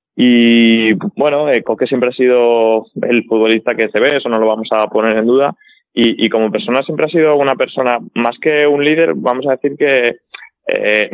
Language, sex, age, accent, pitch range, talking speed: Spanish, male, 20-39, Spanish, 110-130 Hz, 200 wpm